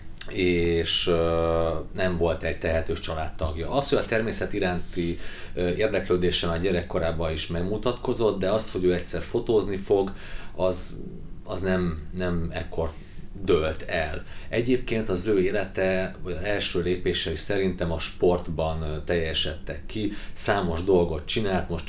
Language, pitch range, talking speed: Hungarian, 80-95 Hz, 130 wpm